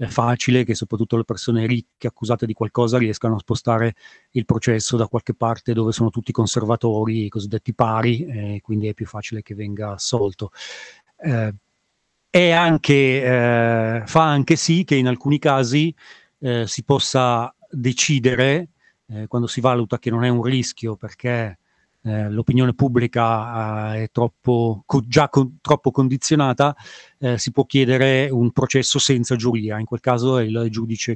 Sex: male